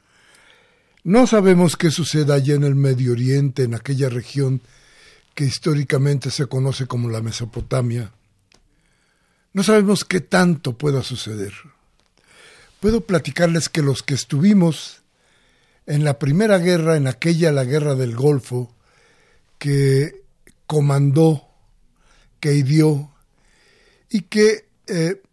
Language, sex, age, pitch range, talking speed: Spanish, male, 60-79, 125-165 Hz, 115 wpm